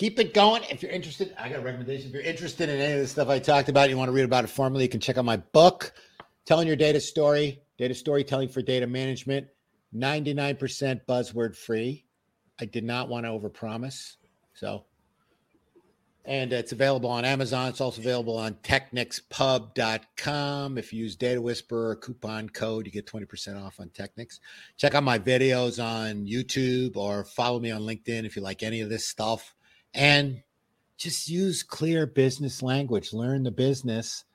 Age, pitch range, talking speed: 50-69, 110-135 Hz, 180 wpm